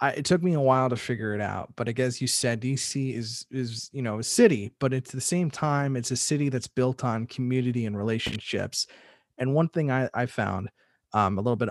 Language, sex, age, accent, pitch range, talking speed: English, male, 30-49, American, 110-130 Hz, 235 wpm